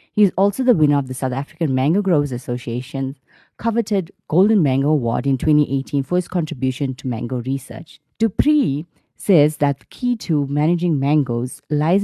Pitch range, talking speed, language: 135-185 Hz, 165 wpm, English